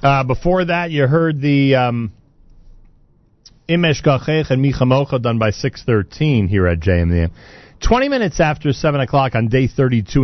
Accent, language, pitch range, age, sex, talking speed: American, English, 100-125 Hz, 40-59, male, 145 wpm